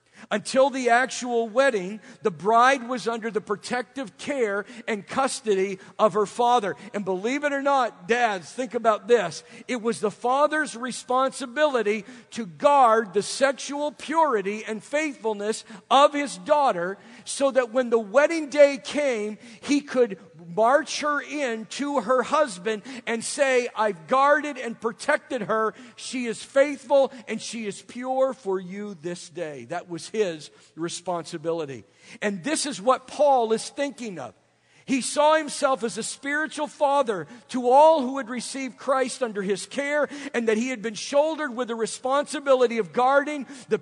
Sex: male